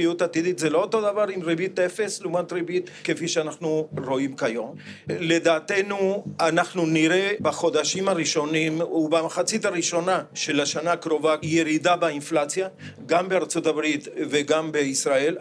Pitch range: 155-185 Hz